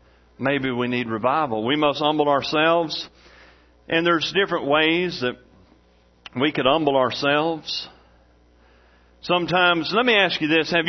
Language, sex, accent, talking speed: English, male, American, 130 wpm